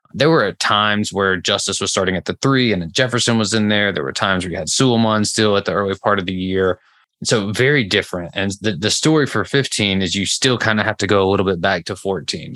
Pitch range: 95-110 Hz